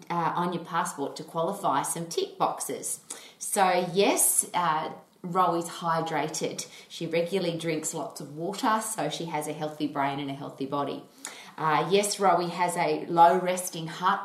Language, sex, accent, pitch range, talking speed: English, female, Australian, 165-200 Hz, 155 wpm